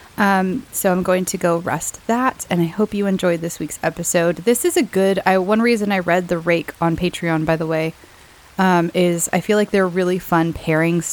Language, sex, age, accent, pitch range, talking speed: English, female, 20-39, American, 170-195 Hz, 220 wpm